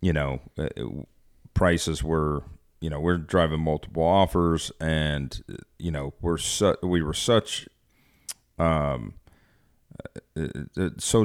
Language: English